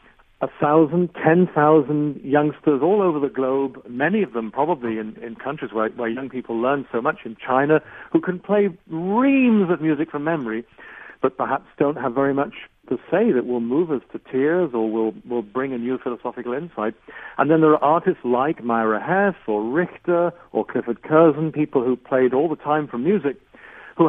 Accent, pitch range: British, 115-155 Hz